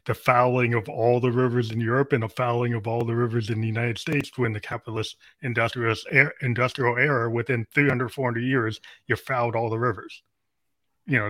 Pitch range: 115-135 Hz